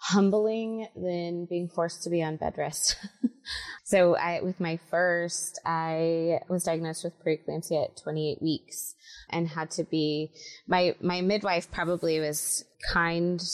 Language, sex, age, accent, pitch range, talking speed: English, female, 20-39, American, 145-170 Hz, 140 wpm